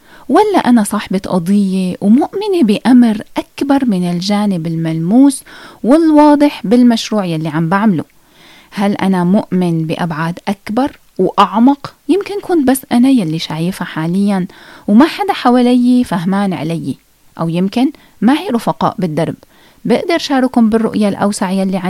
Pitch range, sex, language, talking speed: 180-260 Hz, female, Arabic, 120 wpm